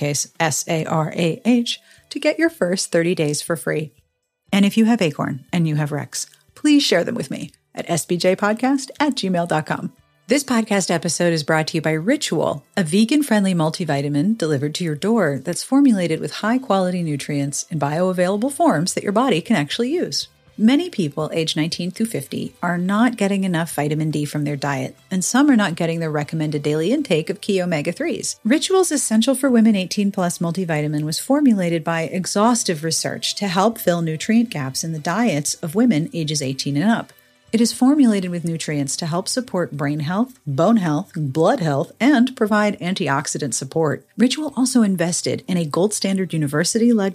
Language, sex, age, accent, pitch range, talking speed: English, female, 40-59, American, 155-225 Hz, 175 wpm